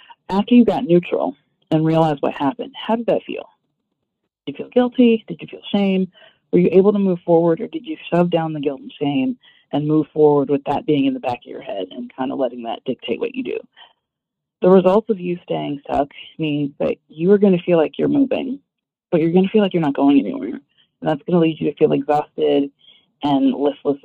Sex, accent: female, American